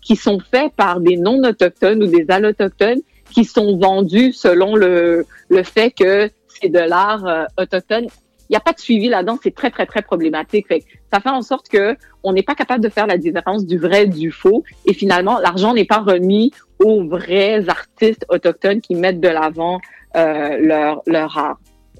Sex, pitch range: female, 180-235 Hz